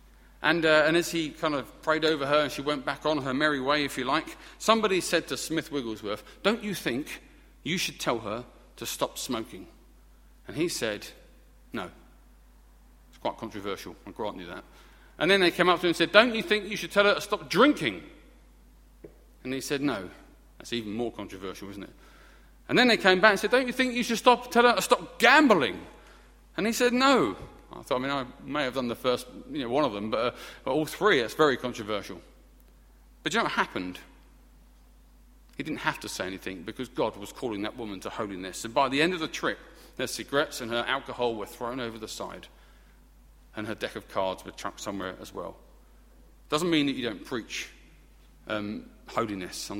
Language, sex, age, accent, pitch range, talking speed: English, male, 40-59, British, 110-180 Hz, 210 wpm